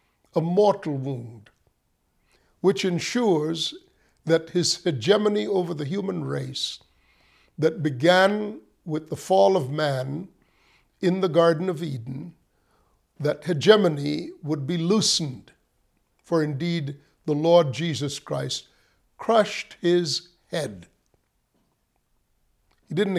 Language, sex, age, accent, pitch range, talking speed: English, male, 50-69, American, 140-180 Hz, 105 wpm